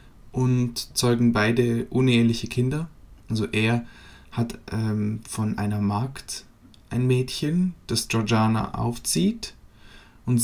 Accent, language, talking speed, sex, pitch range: German, French, 105 wpm, male, 110-125 Hz